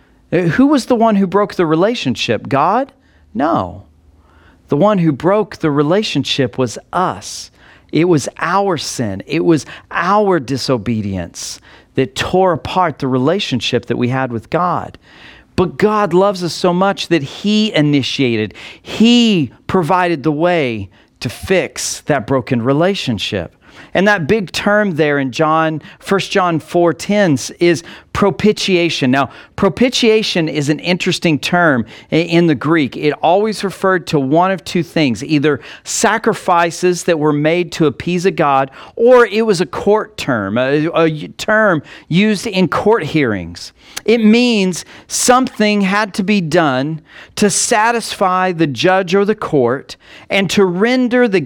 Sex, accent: male, American